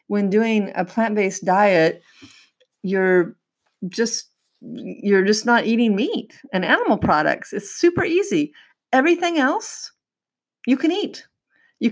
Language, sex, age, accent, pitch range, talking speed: English, female, 40-59, American, 165-240 Hz, 120 wpm